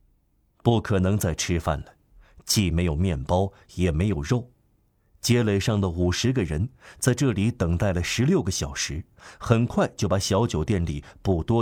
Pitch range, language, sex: 90-115 Hz, Chinese, male